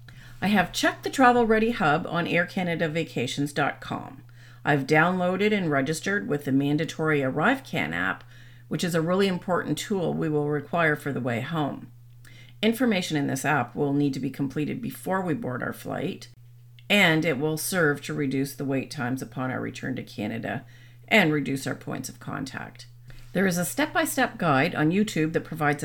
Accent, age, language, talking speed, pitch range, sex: American, 40-59, English, 170 wpm, 125-170 Hz, female